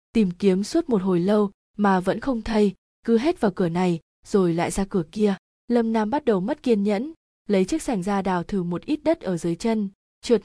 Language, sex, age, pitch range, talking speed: Vietnamese, female, 20-39, 185-225 Hz, 230 wpm